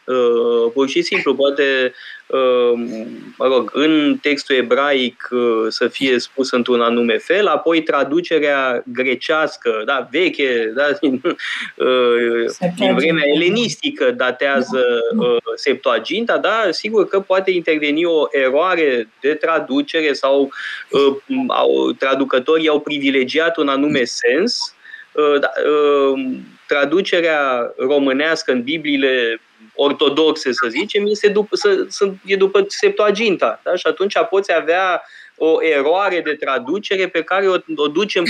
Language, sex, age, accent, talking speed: Romanian, male, 20-39, native, 120 wpm